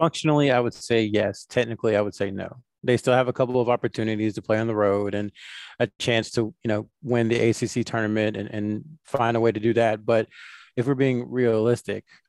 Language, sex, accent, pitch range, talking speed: English, male, American, 110-125 Hz, 220 wpm